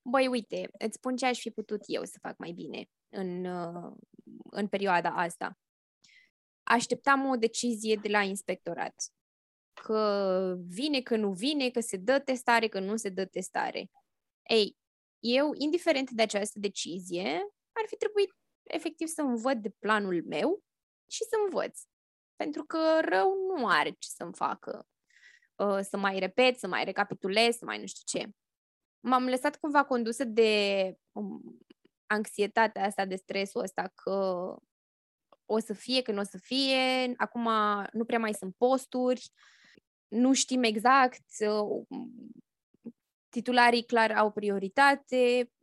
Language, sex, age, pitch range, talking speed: Romanian, female, 20-39, 200-255 Hz, 140 wpm